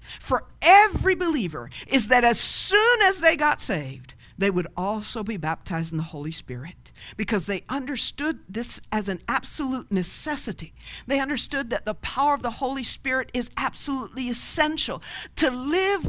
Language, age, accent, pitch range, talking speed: English, 50-69, American, 180-265 Hz, 155 wpm